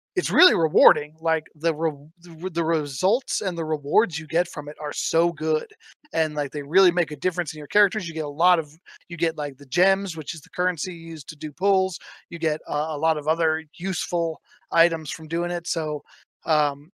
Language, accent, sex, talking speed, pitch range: English, American, male, 210 wpm, 155-180 Hz